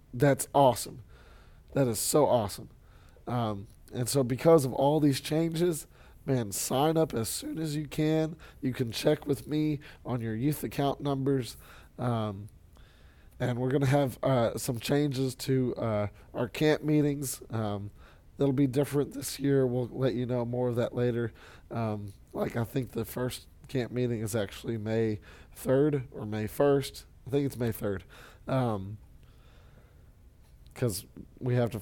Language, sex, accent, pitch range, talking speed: English, male, American, 115-145 Hz, 155 wpm